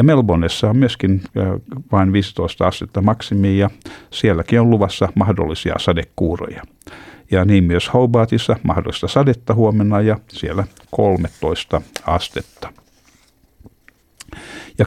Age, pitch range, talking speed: 60-79, 90-110 Hz, 100 wpm